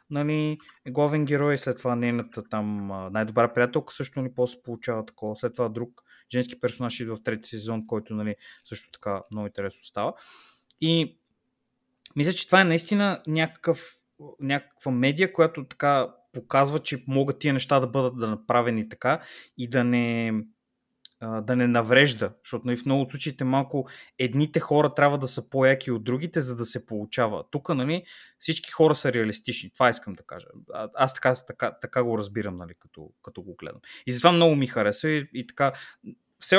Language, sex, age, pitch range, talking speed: Bulgarian, male, 20-39, 115-145 Hz, 170 wpm